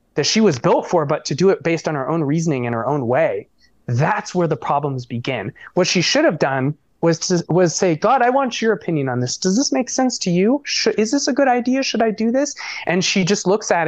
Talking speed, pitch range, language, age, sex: 255 wpm, 140-205 Hz, English, 20-39, male